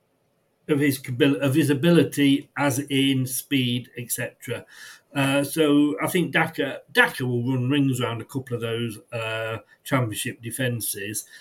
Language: English